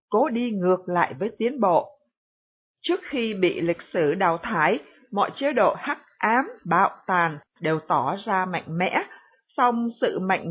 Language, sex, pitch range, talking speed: Vietnamese, female, 185-255 Hz, 165 wpm